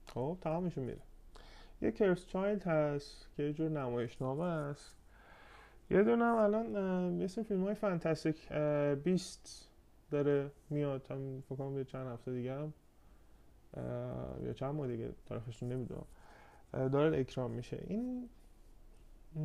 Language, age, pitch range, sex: Persian, 20-39, 135-205 Hz, male